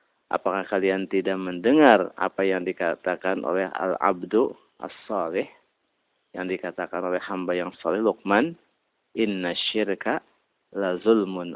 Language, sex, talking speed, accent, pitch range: Indonesian, male, 105 wpm, native, 95-115 Hz